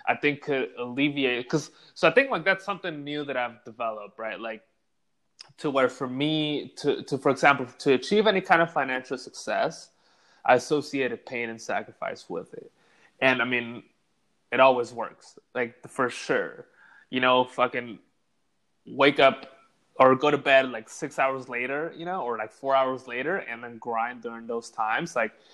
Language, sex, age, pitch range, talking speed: English, male, 20-39, 125-150 Hz, 175 wpm